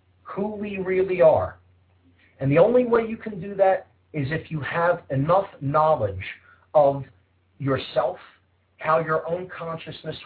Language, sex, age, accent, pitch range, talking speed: English, male, 40-59, American, 105-170 Hz, 140 wpm